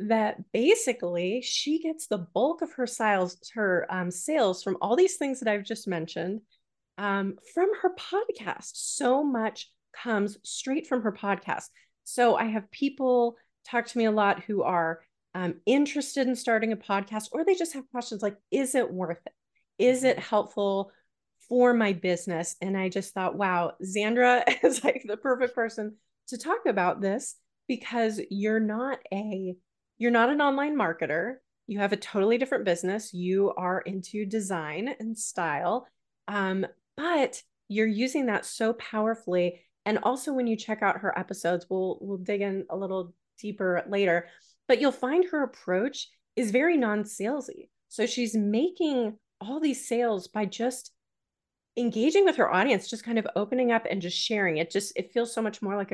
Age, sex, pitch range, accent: 30-49, female, 195-250 Hz, American